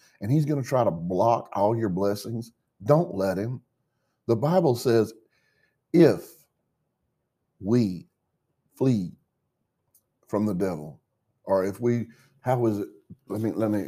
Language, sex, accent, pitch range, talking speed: English, male, American, 90-115 Hz, 140 wpm